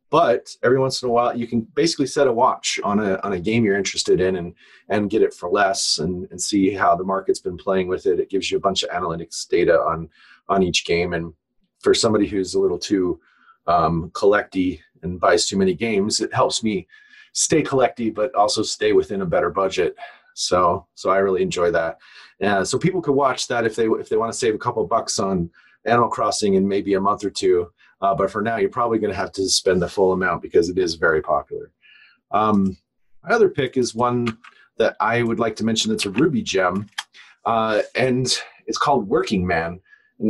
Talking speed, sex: 220 wpm, male